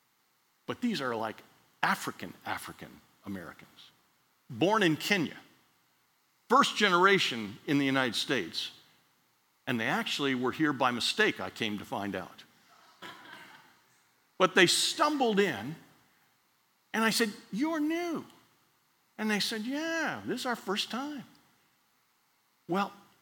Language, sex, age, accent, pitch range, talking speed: English, male, 50-69, American, 115-195 Hz, 115 wpm